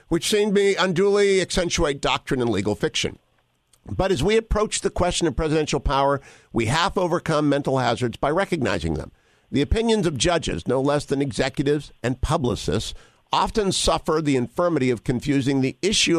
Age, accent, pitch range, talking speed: 50-69, American, 120-170 Hz, 165 wpm